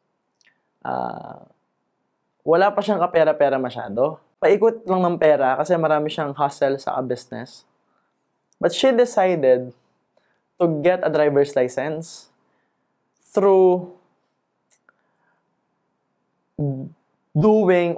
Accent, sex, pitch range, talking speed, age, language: native, male, 140-185 Hz, 85 wpm, 20-39, Filipino